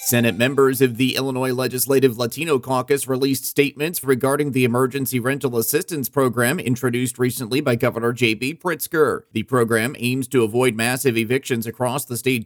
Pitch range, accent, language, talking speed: 120-135 Hz, American, English, 155 wpm